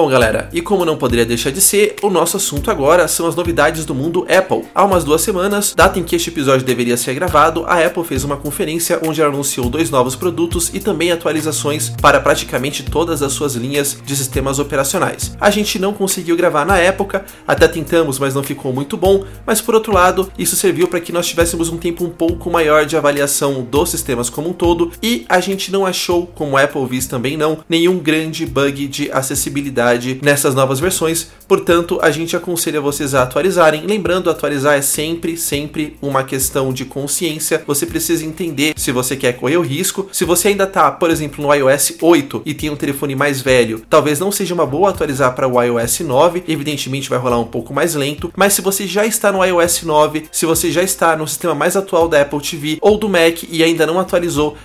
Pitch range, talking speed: 140-175 Hz, 210 wpm